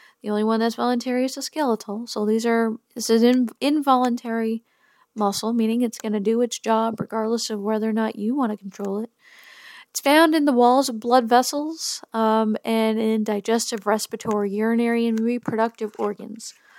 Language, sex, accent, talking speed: English, female, American, 180 wpm